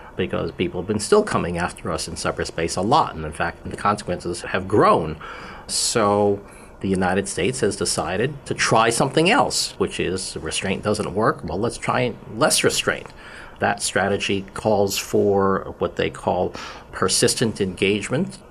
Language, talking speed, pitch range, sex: English, 155 wpm, 95-110 Hz, male